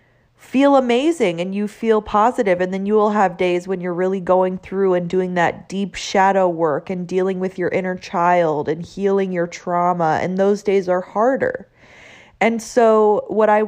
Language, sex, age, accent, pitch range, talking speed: English, female, 20-39, American, 185-235 Hz, 185 wpm